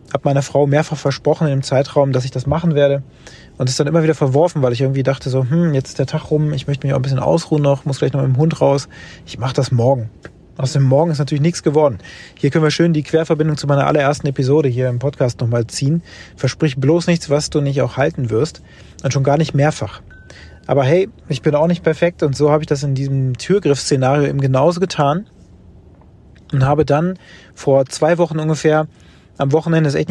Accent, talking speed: German, 230 wpm